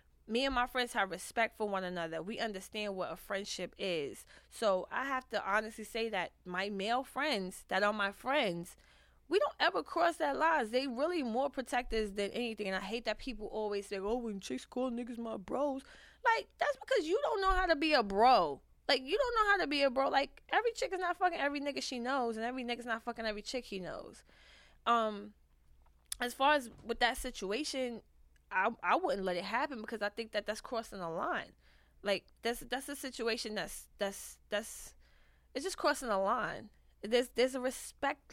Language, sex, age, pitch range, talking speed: English, female, 20-39, 195-265 Hz, 210 wpm